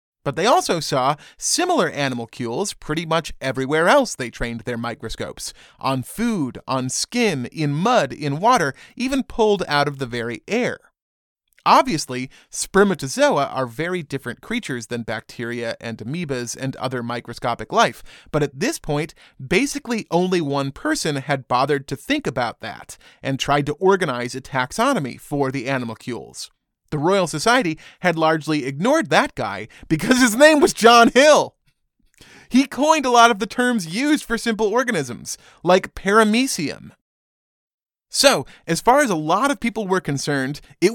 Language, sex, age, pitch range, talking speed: English, male, 30-49, 135-215 Hz, 150 wpm